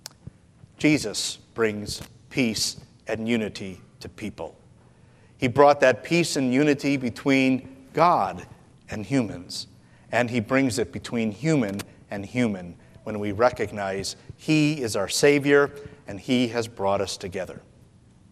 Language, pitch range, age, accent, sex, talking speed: English, 110-155 Hz, 50-69, American, male, 125 wpm